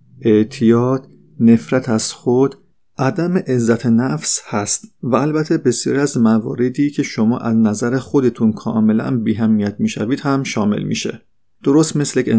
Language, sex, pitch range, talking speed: Persian, male, 110-140 Hz, 130 wpm